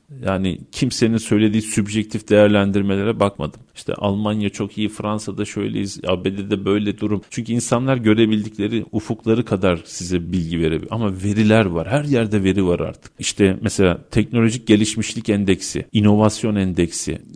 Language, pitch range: Turkish, 100-125 Hz